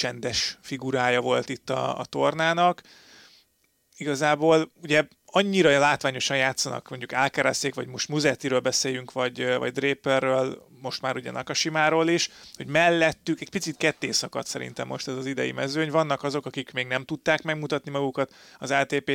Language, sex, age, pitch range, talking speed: Hungarian, male, 30-49, 130-150 Hz, 145 wpm